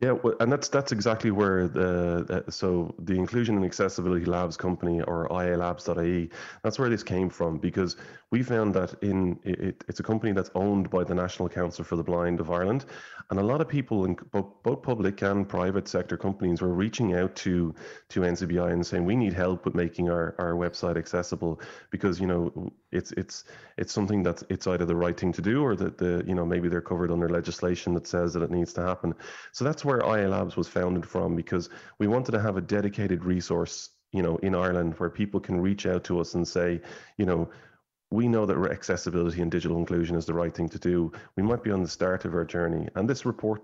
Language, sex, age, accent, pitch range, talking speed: English, male, 30-49, Irish, 85-100 Hz, 220 wpm